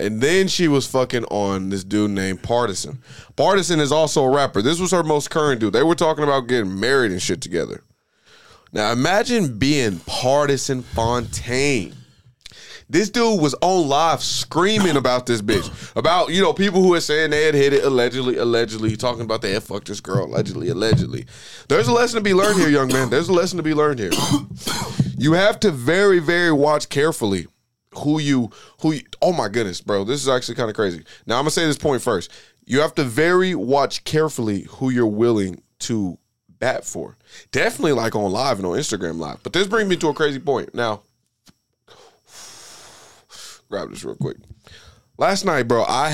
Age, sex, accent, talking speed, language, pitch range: 20-39, male, American, 195 wpm, English, 110-160 Hz